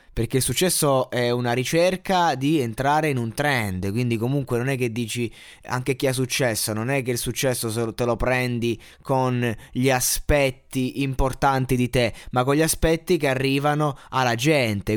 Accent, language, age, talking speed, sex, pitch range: native, Italian, 20-39, 170 wpm, male, 120-155 Hz